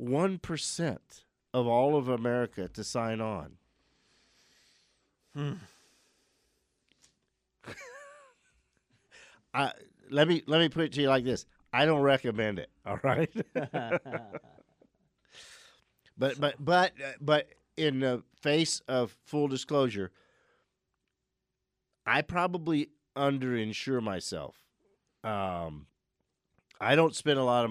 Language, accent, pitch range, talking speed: English, American, 105-145 Hz, 105 wpm